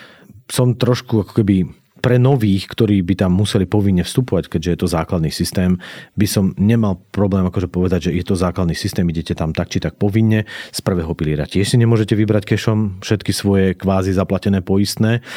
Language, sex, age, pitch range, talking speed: Slovak, male, 40-59, 90-110 Hz, 185 wpm